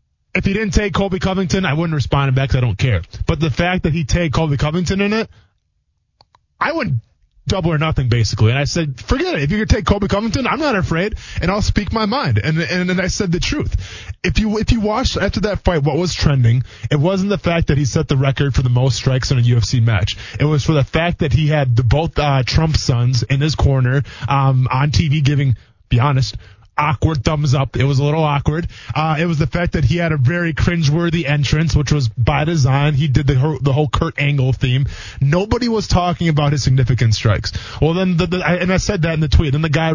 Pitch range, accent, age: 125-165 Hz, American, 20-39